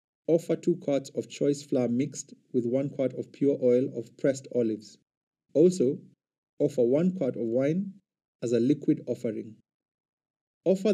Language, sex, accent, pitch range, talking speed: English, male, South African, 120-150 Hz, 150 wpm